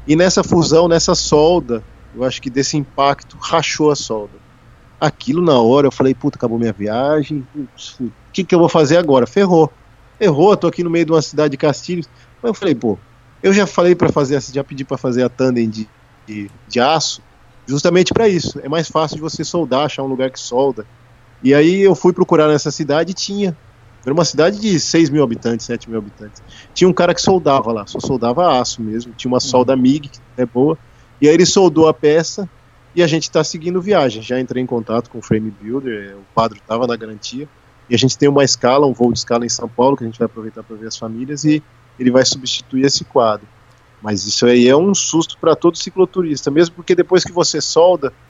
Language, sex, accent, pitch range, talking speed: Portuguese, male, Brazilian, 120-165 Hz, 220 wpm